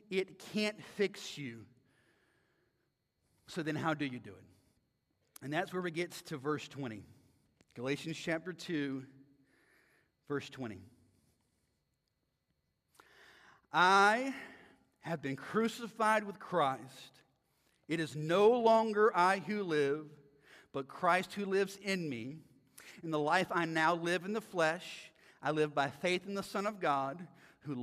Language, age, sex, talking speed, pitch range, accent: English, 40-59, male, 135 wpm, 145-205 Hz, American